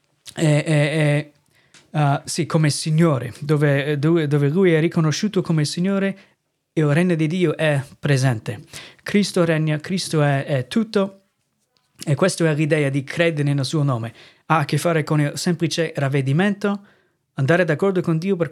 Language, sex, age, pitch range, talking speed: Italian, male, 30-49, 145-175 Hz, 160 wpm